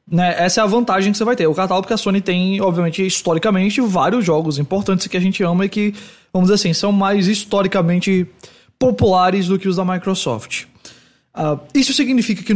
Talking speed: 200 wpm